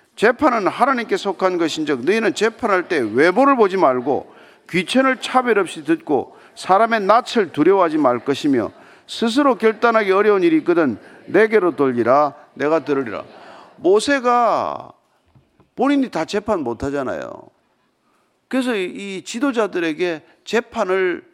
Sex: male